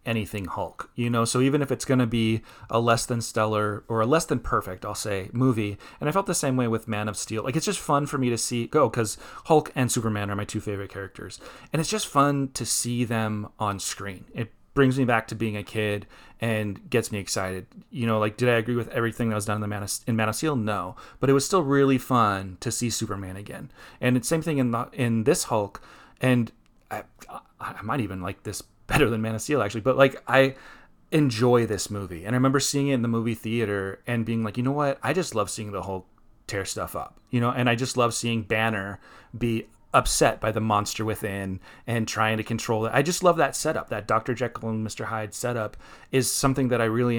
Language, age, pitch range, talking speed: English, 30-49, 105-125 Hz, 240 wpm